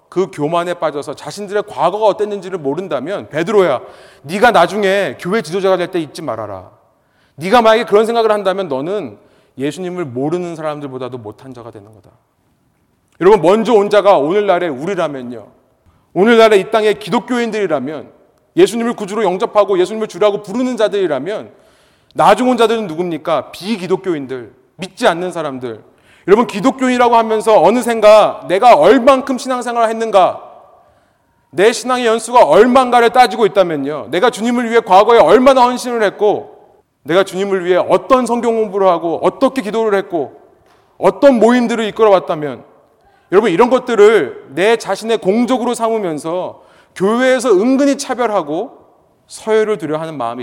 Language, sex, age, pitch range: Korean, male, 30-49, 175-235 Hz